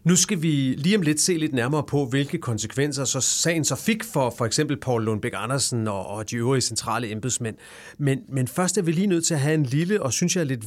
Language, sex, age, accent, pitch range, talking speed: English, male, 30-49, Danish, 120-160 Hz, 255 wpm